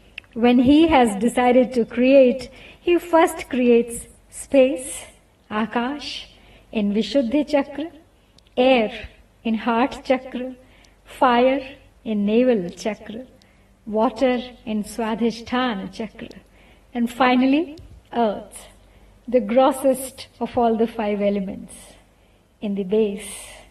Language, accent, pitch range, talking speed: Hindi, native, 225-270 Hz, 100 wpm